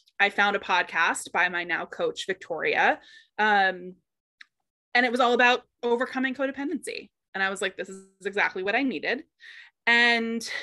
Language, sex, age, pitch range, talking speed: English, female, 20-39, 195-250 Hz, 160 wpm